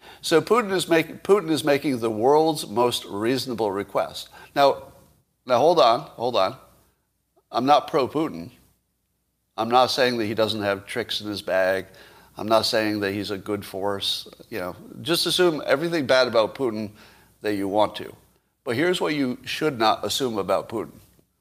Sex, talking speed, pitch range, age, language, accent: male, 170 wpm, 105-150 Hz, 60-79, English, American